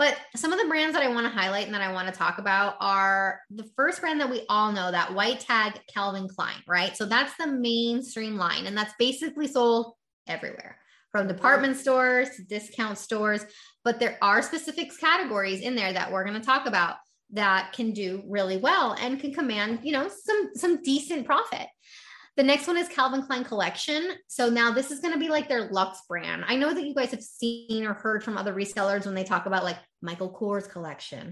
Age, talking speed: 20-39, 215 wpm